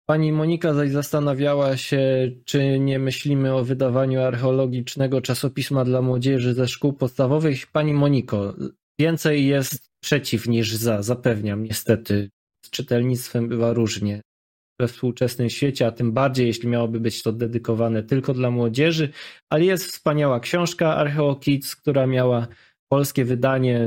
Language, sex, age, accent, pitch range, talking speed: Polish, male, 20-39, native, 115-140 Hz, 135 wpm